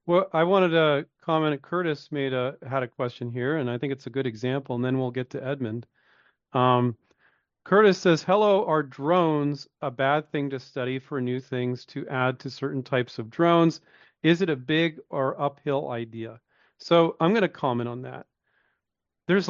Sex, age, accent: male, 40-59, American